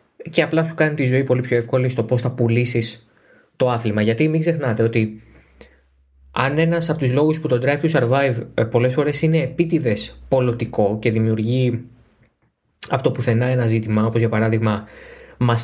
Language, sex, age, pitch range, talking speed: Greek, male, 20-39, 115-150 Hz, 170 wpm